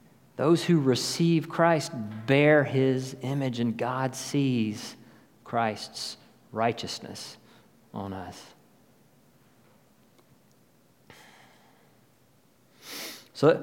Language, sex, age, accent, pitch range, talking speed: English, male, 40-59, American, 115-140 Hz, 65 wpm